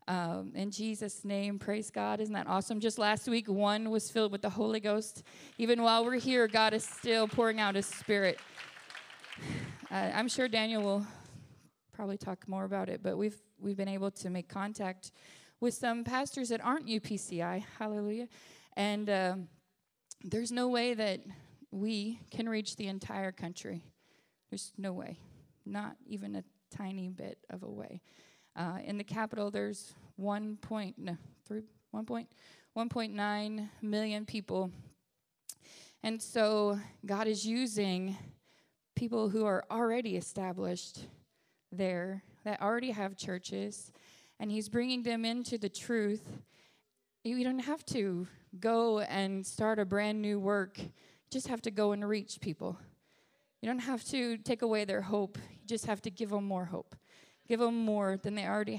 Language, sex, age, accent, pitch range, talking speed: English, female, 20-39, American, 195-225 Hz, 155 wpm